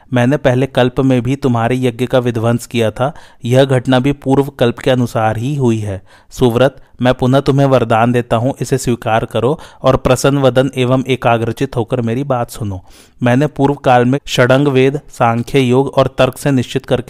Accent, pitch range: native, 120-135 Hz